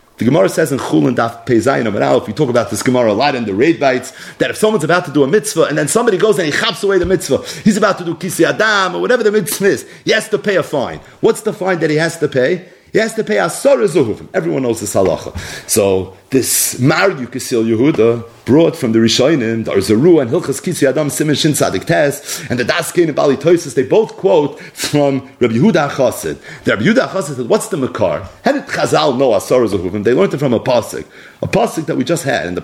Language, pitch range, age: English, 125-180 Hz, 40-59